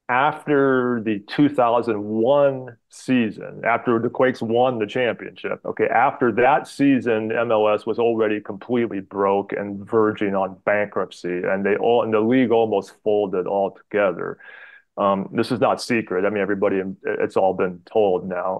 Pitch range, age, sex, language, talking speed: 100-110 Hz, 30-49, male, English, 155 wpm